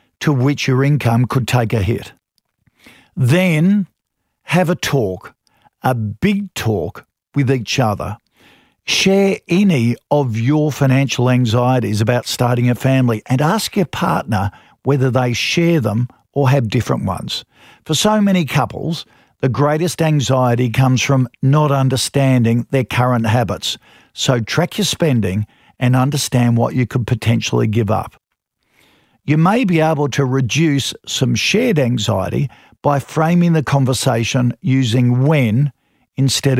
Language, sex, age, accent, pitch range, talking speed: English, male, 50-69, Australian, 120-150 Hz, 135 wpm